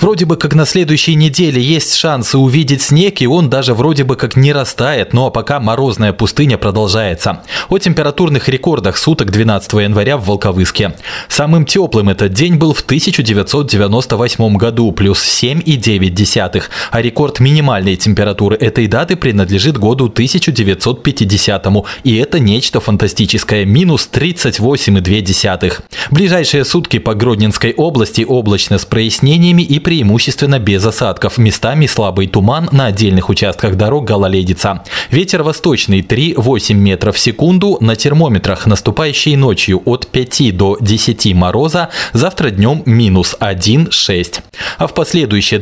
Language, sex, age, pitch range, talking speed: Russian, male, 20-39, 105-145 Hz, 130 wpm